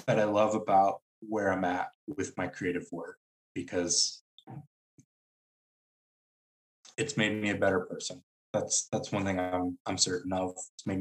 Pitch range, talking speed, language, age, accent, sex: 105-135 Hz, 155 wpm, English, 20-39, American, male